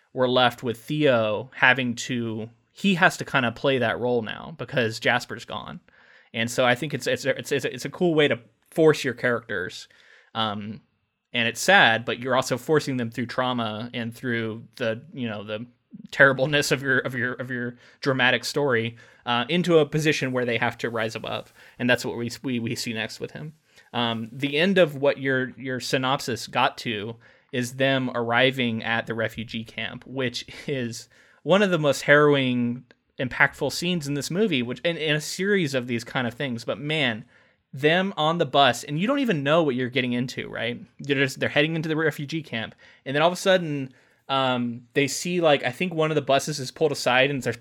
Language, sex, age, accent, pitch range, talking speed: English, male, 20-39, American, 120-150 Hz, 200 wpm